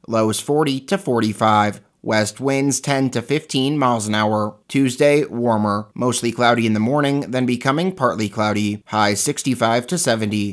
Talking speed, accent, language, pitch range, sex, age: 160 wpm, American, English, 110-140 Hz, male, 30-49